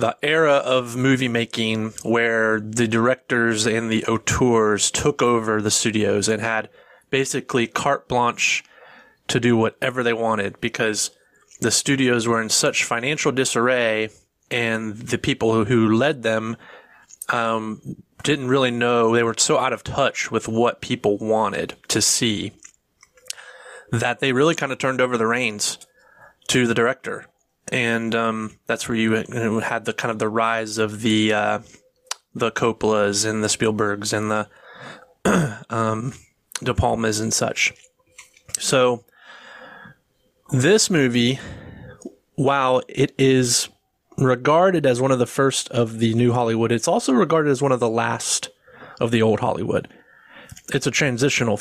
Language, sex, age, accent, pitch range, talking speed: English, male, 30-49, American, 110-130 Hz, 145 wpm